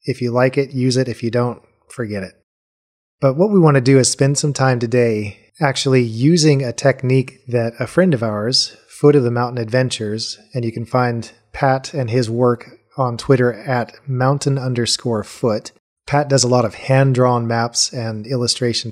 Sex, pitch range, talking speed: male, 115-135 Hz, 185 wpm